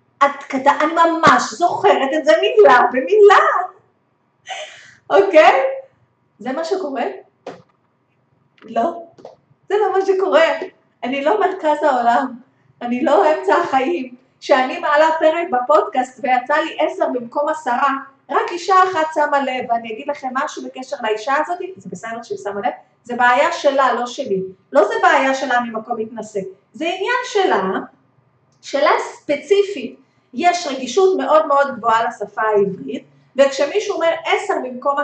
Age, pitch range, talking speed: 30-49, 220-330 Hz, 135 wpm